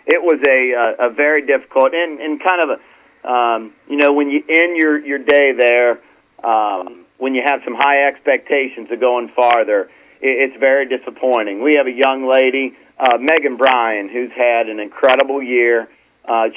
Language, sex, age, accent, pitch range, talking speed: English, male, 40-59, American, 125-150 Hz, 180 wpm